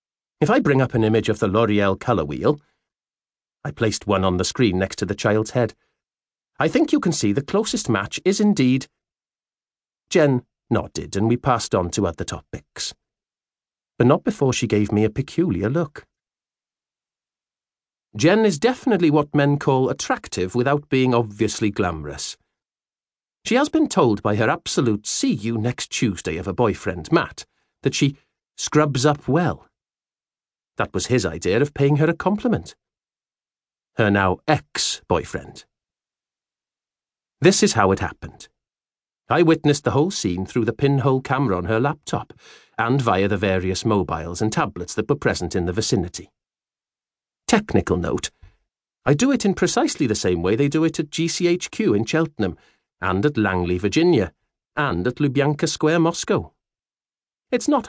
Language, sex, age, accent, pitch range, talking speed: English, male, 40-59, British, 100-155 Hz, 155 wpm